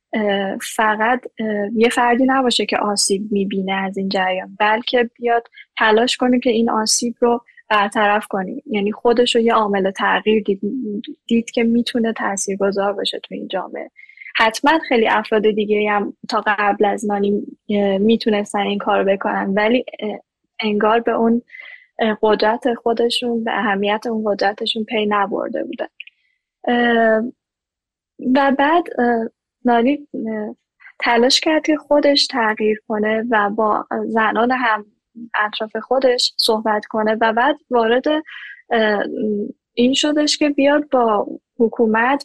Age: 10-29